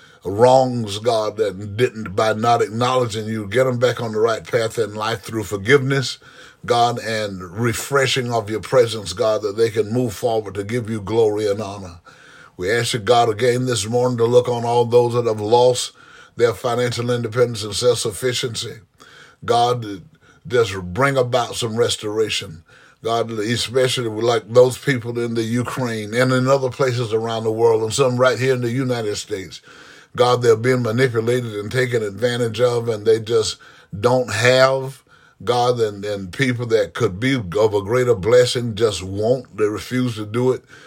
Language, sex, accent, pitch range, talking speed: English, male, American, 115-130 Hz, 170 wpm